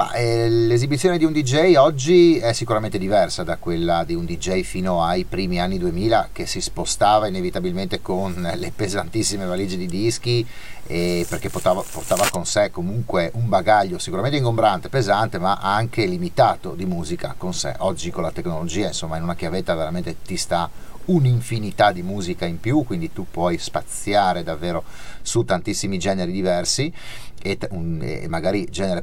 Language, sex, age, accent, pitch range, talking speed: Italian, male, 30-49, native, 90-115 Hz, 155 wpm